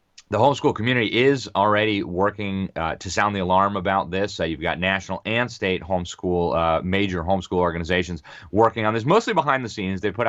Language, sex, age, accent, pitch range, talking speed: English, male, 30-49, American, 85-100 Hz, 190 wpm